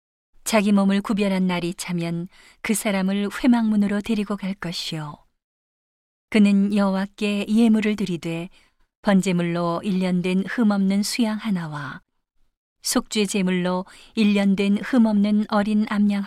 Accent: native